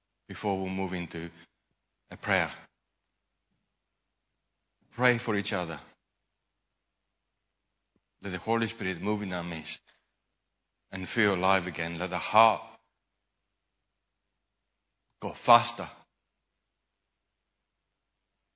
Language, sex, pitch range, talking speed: English, male, 85-105 Hz, 85 wpm